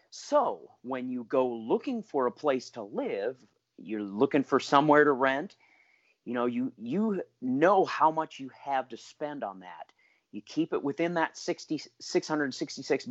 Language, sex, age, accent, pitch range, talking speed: English, male, 40-59, American, 120-170 Hz, 160 wpm